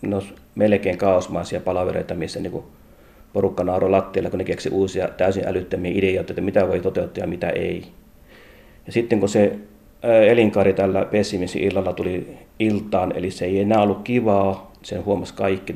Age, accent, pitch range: 30-49, native, 90-100 Hz